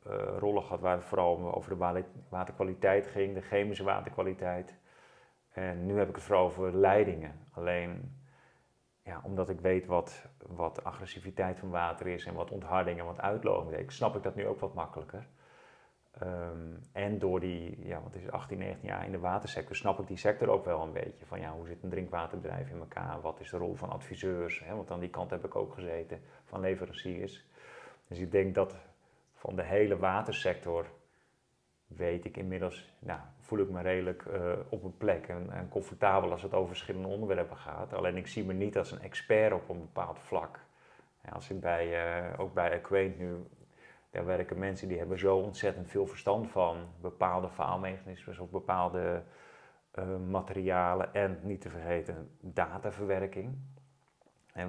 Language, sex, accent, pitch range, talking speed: Dutch, male, Dutch, 85-95 Hz, 180 wpm